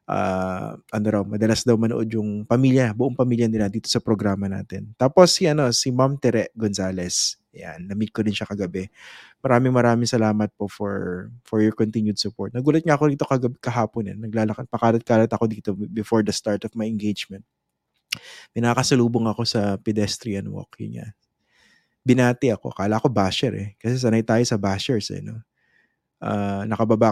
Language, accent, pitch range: English, Filipino, 105-125 Hz